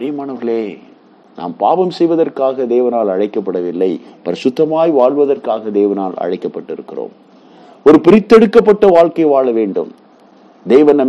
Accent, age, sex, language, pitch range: native, 50-69, male, Tamil, 105-180 Hz